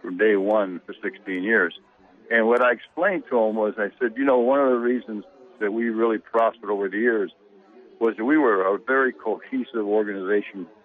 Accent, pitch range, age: American, 110-125 Hz, 60-79